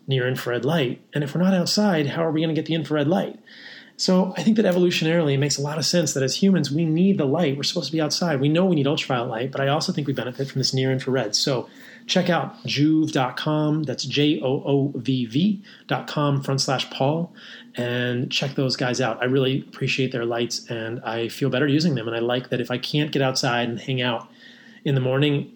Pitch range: 130-160 Hz